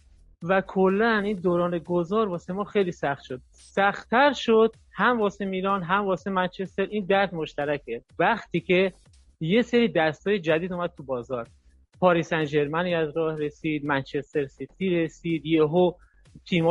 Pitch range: 160-200 Hz